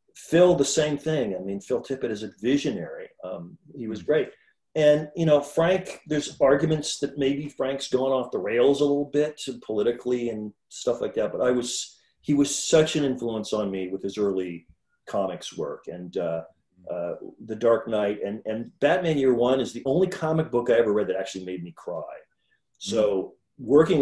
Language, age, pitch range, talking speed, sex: English, 40-59, 110-170 Hz, 190 wpm, male